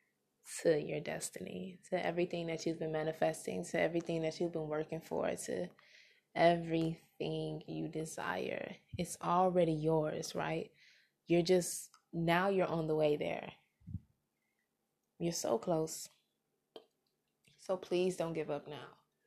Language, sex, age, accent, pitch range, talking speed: English, female, 20-39, American, 160-185 Hz, 130 wpm